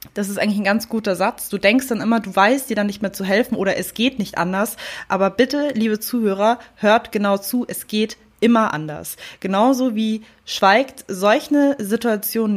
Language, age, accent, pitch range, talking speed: German, 20-39, German, 200-245 Hz, 195 wpm